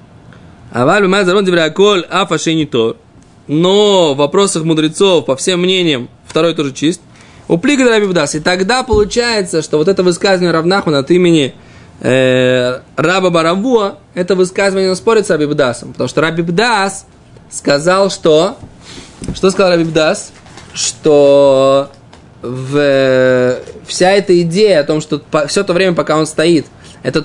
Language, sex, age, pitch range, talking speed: Russian, male, 20-39, 145-190 Hz, 125 wpm